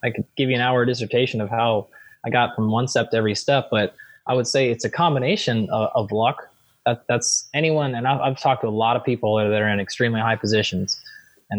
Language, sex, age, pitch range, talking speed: English, male, 20-39, 110-130 Hz, 240 wpm